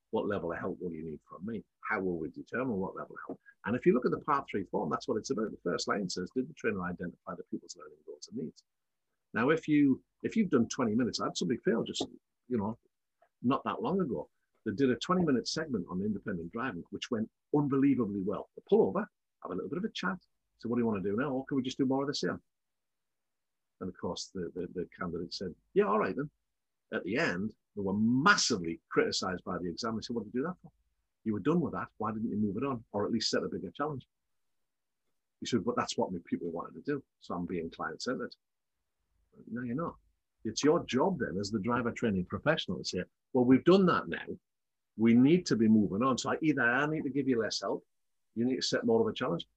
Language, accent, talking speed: English, British, 250 wpm